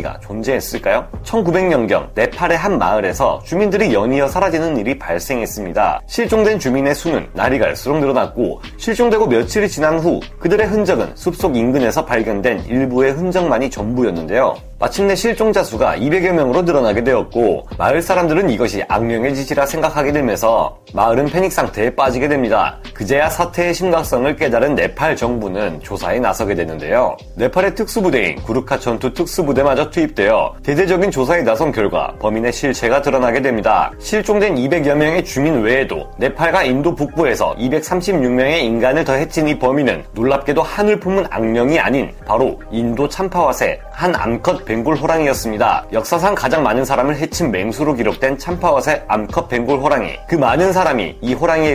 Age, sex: 30-49, male